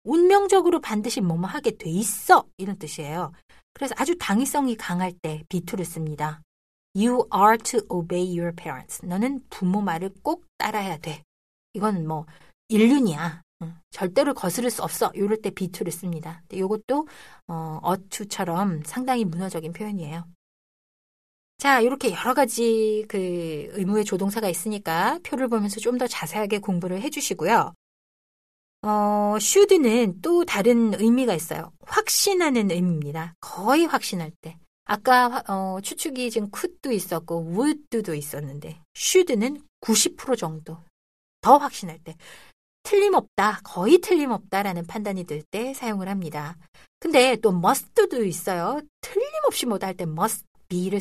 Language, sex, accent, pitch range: Korean, female, native, 175-250 Hz